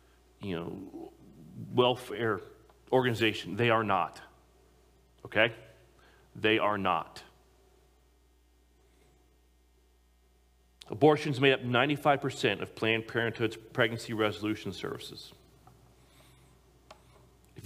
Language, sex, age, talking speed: English, male, 40-59, 75 wpm